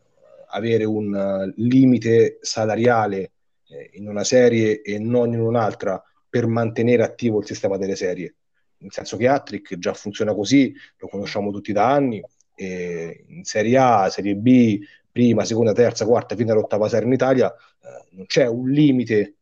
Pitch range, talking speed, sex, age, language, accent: 105-130 Hz, 160 wpm, male, 30-49, Italian, native